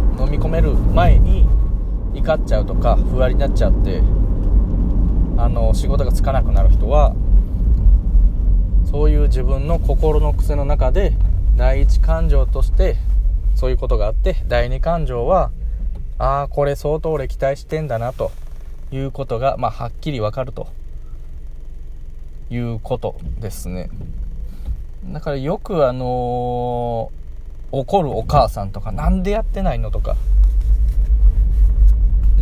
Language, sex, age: Japanese, male, 20-39